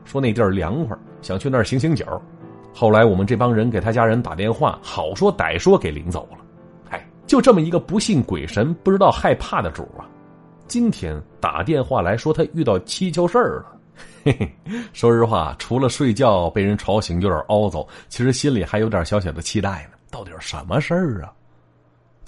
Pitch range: 85-135 Hz